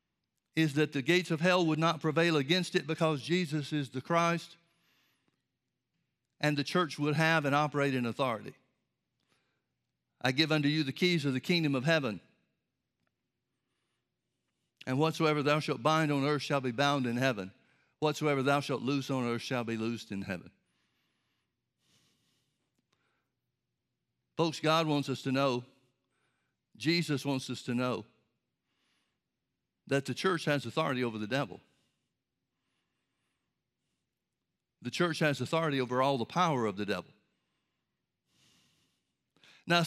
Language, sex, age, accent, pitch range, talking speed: English, male, 60-79, American, 135-165 Hz, 135 wpm